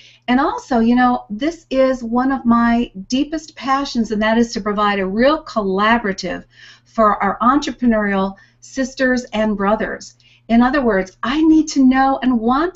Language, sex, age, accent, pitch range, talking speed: English, female, 50-69, American, 195-250 Hz, 160 wpm